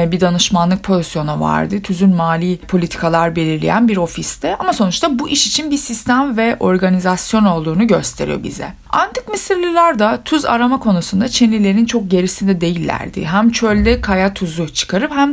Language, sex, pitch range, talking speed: Turkish, female, 180-255 Hz, 150 wpm